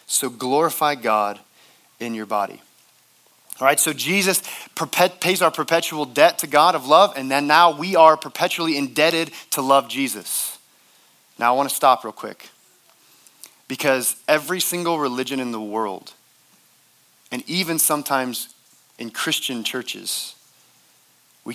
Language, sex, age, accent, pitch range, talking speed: English, male, 30-49, American, 135-175 Hz, 135 wpm